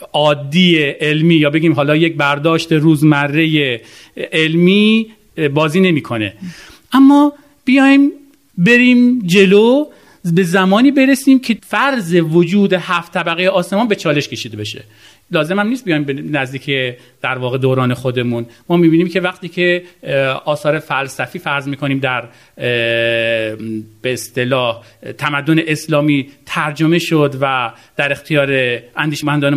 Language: Persian